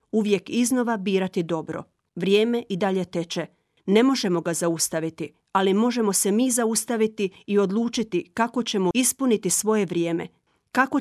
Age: 40-59